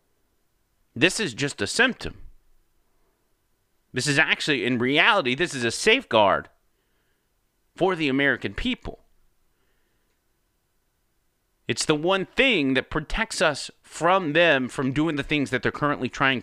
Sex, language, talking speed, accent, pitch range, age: male, English, 130 wpm, American, 120-165 Hz, 30-49